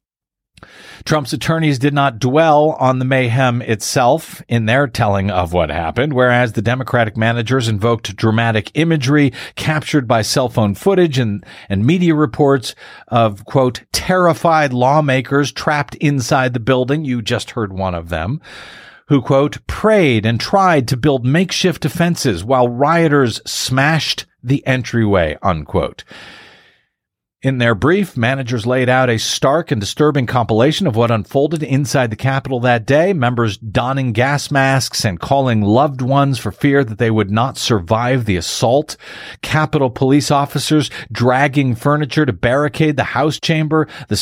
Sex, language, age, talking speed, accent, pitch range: male, English, 50-69, 145 wpm, American, 120-150 Hz